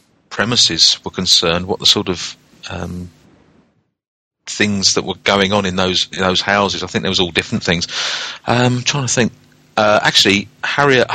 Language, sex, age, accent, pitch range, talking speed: English, male, 40-59, British, 95-110 Hz, 180 wpm